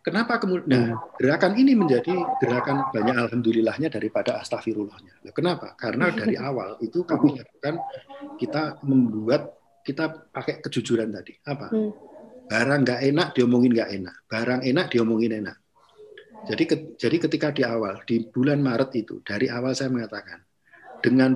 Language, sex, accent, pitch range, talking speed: Indonesian, male, native, 115-160 Hz, 140 wpm